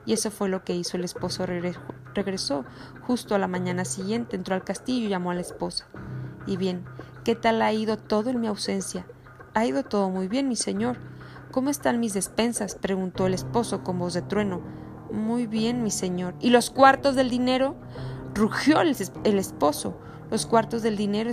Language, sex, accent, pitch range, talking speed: Spanish, female, Mexican, 180-240 Hz, 185 wpm